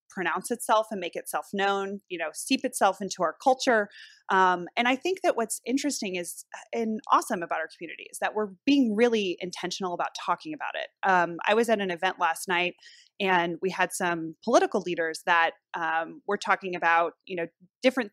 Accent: American